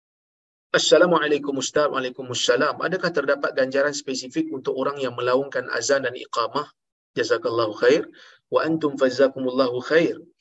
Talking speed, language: 125 wpm, Malayalam